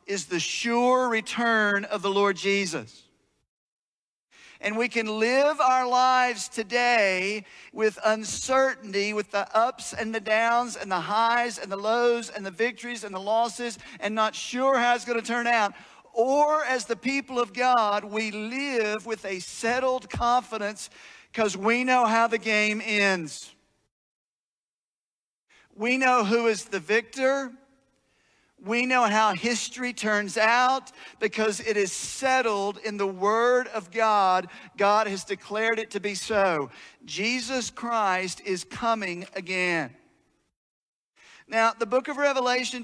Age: 50-69